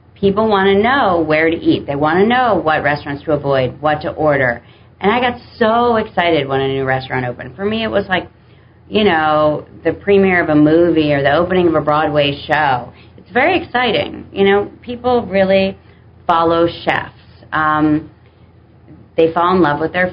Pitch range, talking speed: 135-170 Hz, 185 wpm